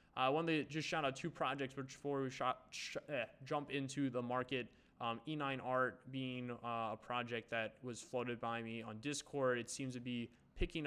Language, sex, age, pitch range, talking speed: English, male, 20-39, 115-135 Hz, 200 wpm